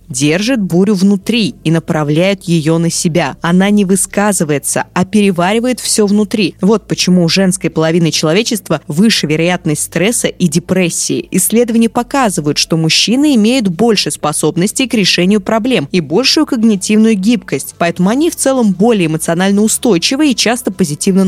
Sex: female